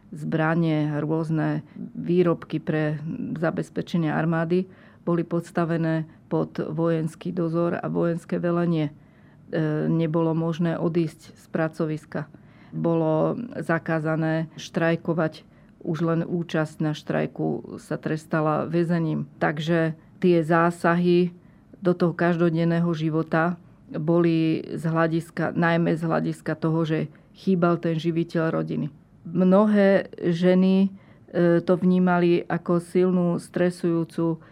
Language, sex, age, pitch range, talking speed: Slovak, female, 40-59, 160-175 Hz, 95 wpm